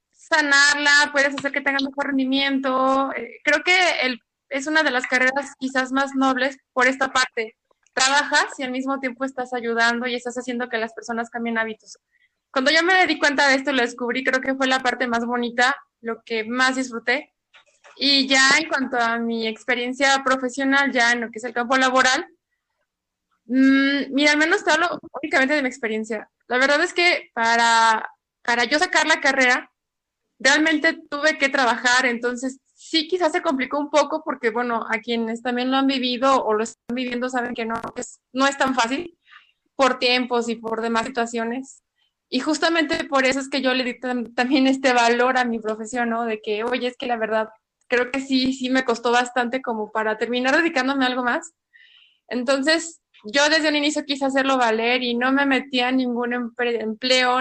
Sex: female